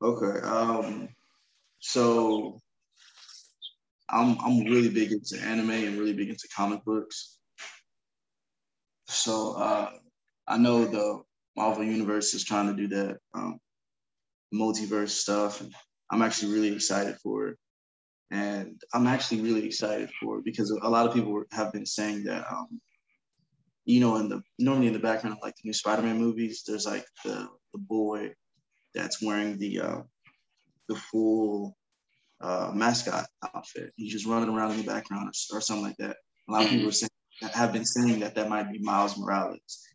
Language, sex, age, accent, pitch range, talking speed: English, male, 20-39, American, 105-115 Hz, 165 wpm